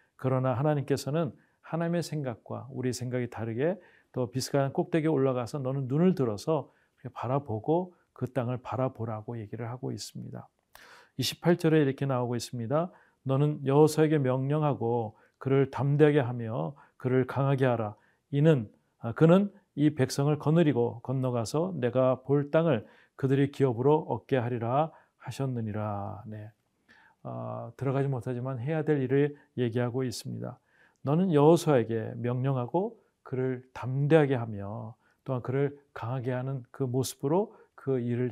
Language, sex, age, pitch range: Korean, male, 40-59, 125-150 Hz